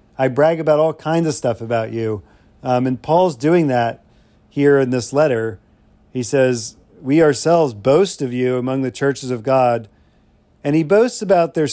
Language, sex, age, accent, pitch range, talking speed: English, male, 40-59, American, 120-140 Hz, 180 wpm